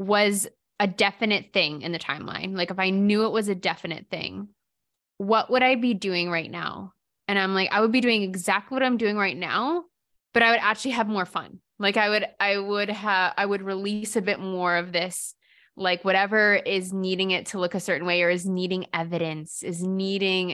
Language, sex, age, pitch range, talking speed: English, female, 20-39, 180-210 Hz, 215 wpm